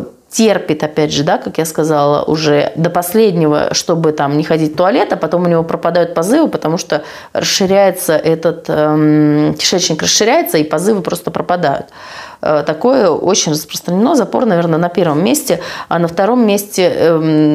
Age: 30-49